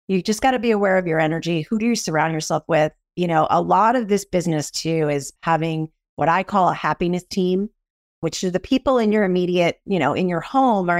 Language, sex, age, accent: English, female, 30-49, American